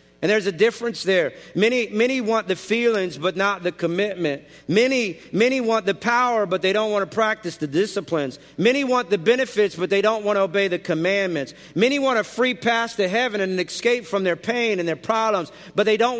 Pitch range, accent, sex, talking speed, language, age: 205-250 Hz, American, male, 215 wpm, English, 50-69